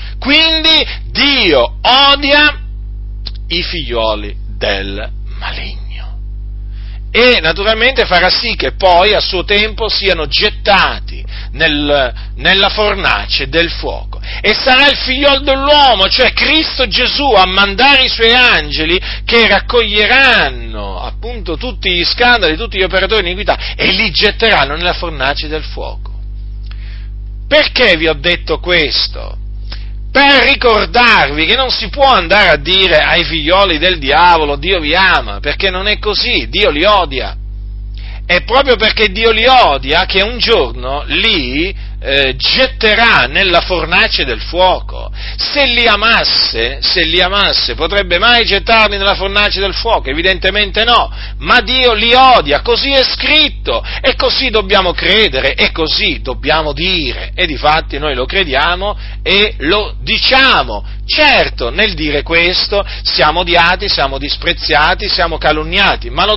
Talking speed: 130 wpm